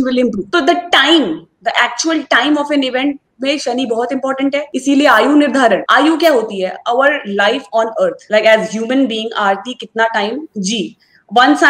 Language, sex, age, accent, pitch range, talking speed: Hindi, female, 20-39, native, 230-295 Hz, 185 wpm